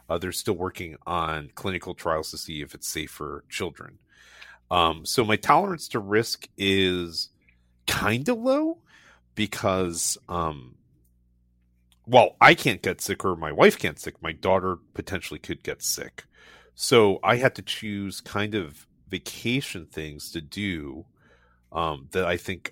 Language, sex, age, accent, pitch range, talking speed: English, male, 40-59, American, 80-105 Hz, 150 wpm